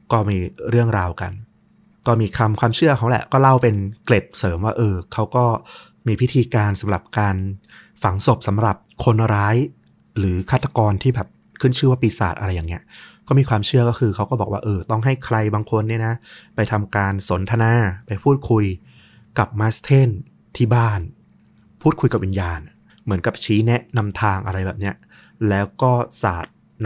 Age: 20-39